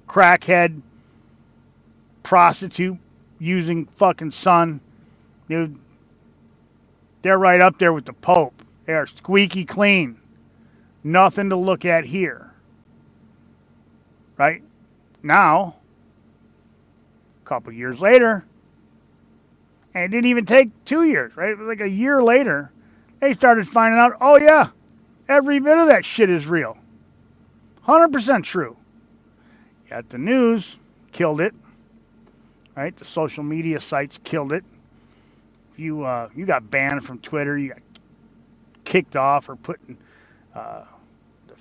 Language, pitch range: English, 135-195 Hz